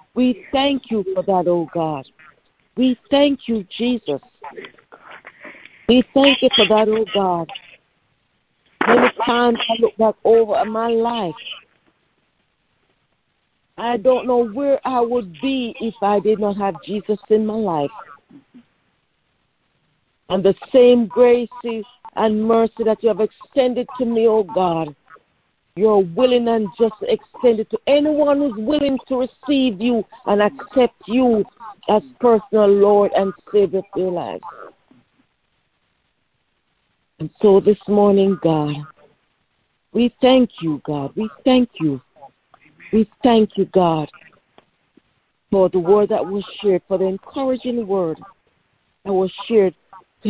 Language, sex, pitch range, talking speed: English, female, 195-245 Hz, 130 wpm